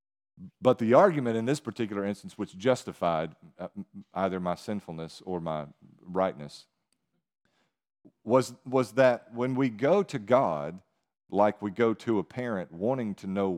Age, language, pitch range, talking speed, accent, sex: 40-59, English, 95-130 Hz, 140 wpm, American, male